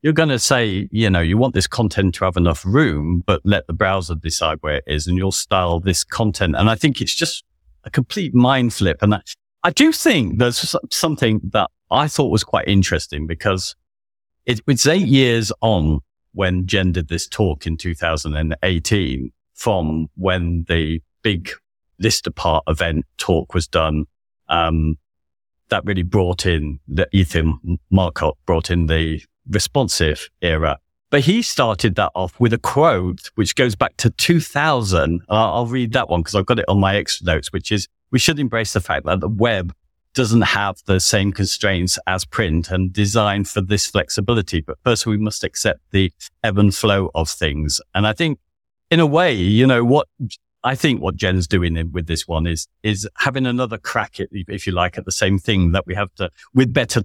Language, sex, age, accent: English, male, 40-59, British